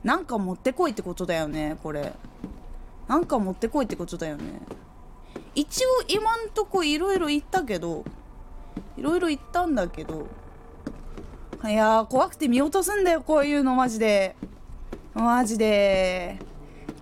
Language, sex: Japanese, female